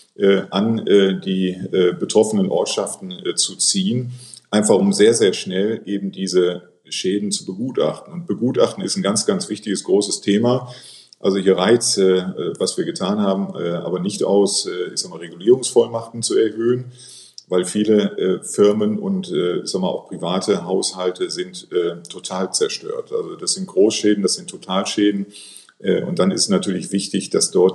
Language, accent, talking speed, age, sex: German, German, 145 wpm, 40-59, male